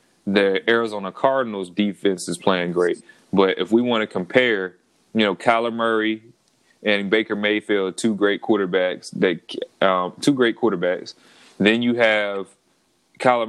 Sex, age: male, 20-39